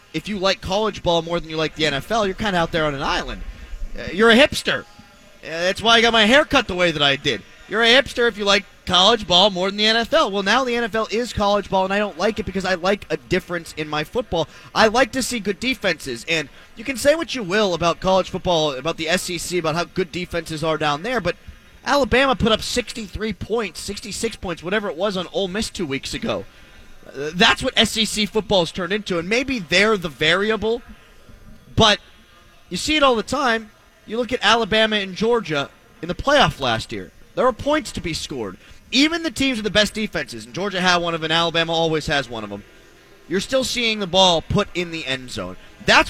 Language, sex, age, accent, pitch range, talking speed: English, male, 30-49, American, 170-235 Hz, 230 wpm